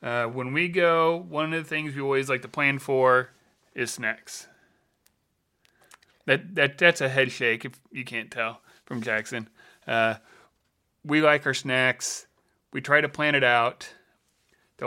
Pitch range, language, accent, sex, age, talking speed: 120-140 Hz, English, American, male, 30-49, 160 wpm